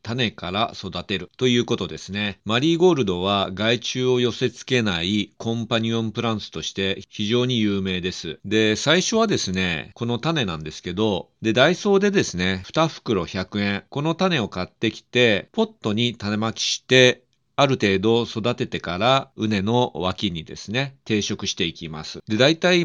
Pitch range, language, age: 95-130 Hz, Japanese, 40-59